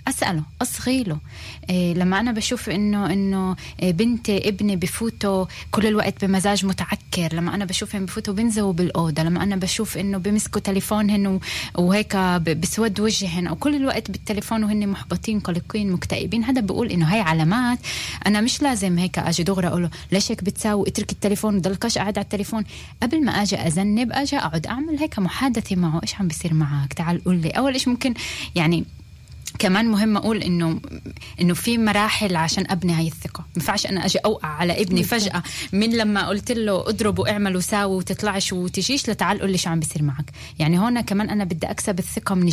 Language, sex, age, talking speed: Hebrew, female, 10-29, 155 wpm